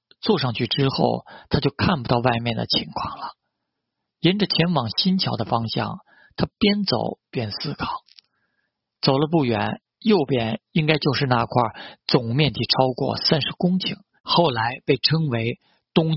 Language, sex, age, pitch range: Chinese, male, 50-69, 125-170 Hz